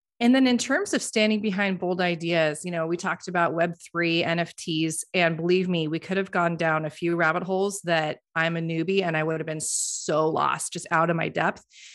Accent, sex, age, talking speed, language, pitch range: American, female, 30-49, 225 wpm, English, 165-195 Hz